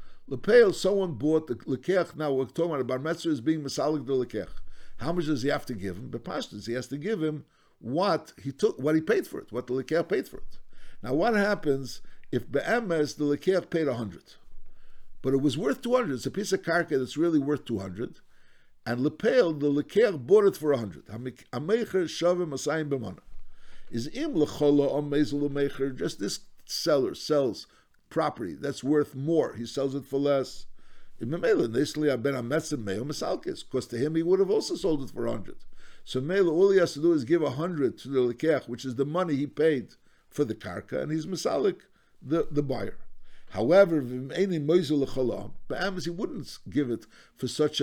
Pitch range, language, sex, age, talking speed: 130-175 Hz, English, male, 60-79, 175 wpm